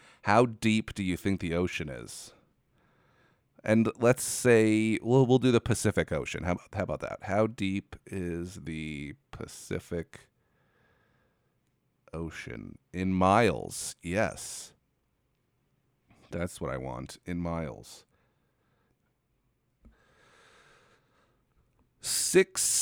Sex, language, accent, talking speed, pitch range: male, English, American, 100 wpm, 95-130 Hz